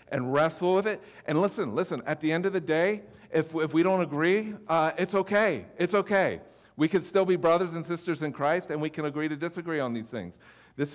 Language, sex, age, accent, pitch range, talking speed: English, male, 50-69, American, 130-170 Hz, 230 wpm